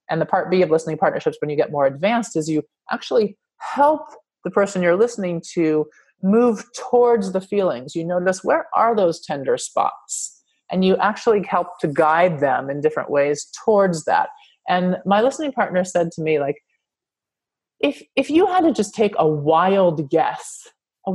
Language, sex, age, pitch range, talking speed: English, male, 30-49, 155-225 Hz, 180 wpm